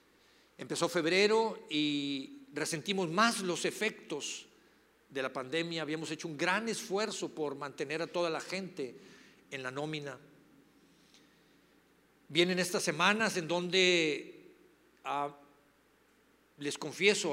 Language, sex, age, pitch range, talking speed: Spanish, male, 50-69, 150-190 Hz, 110 wpm